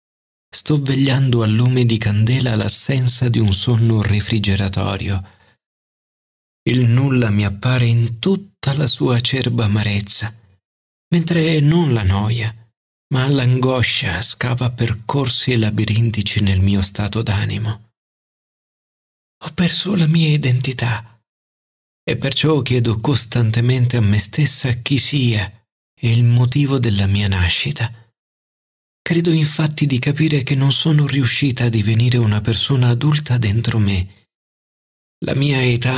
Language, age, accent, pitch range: Italian, 40-59, native, 110-140 Hz